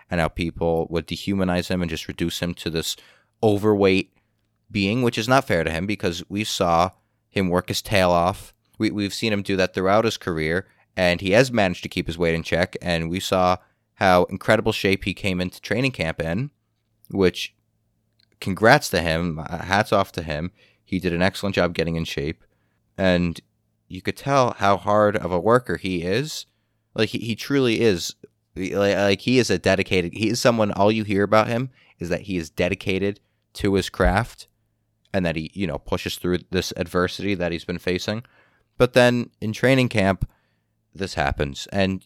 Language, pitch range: English, 90-110 Hz